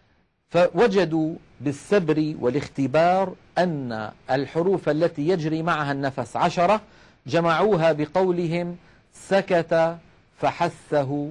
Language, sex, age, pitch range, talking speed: Arabic, male, 50-69, 145-175 Hz, 75 wpm